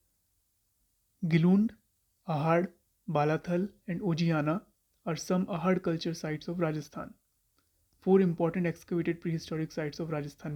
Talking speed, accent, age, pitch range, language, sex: 110 wpm, Indian, 30-49, 150-175 Hz, English, male